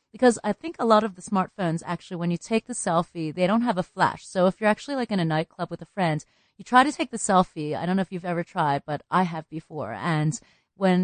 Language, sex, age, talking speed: English, female, 30-49, 265 wpm